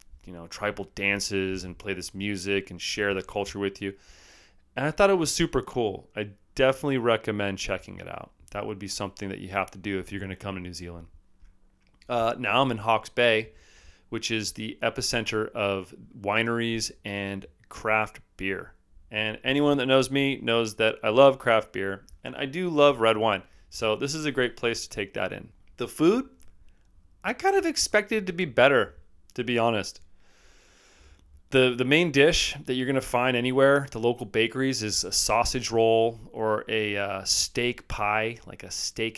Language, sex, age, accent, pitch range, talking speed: English, male, 30-49, American, 95-125 Hz, 190 wpm